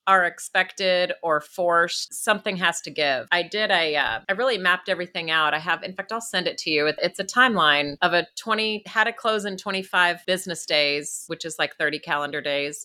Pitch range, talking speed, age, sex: 165-220 Hz, 210 wpm, 30-49, female